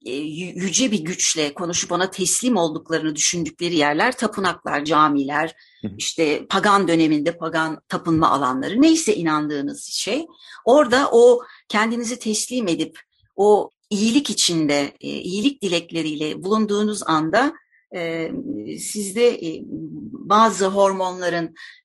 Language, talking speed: Turkish, 95 wpm